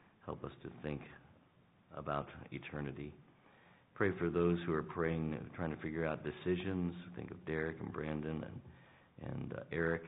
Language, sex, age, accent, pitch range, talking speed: English, male, 50-69, American, 70-85 Hz, 155 wpm